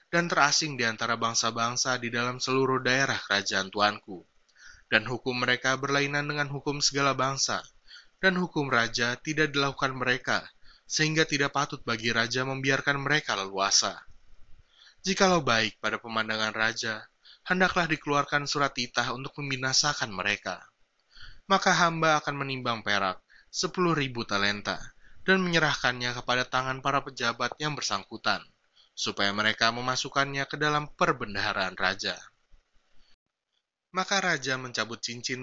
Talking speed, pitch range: 120 wpm, 115-145 Hz